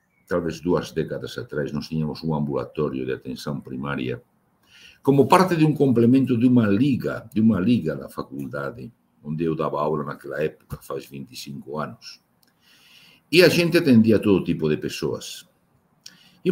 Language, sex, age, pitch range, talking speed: Portuguese, male, 60-79, 80-110 Hz, 155 wpm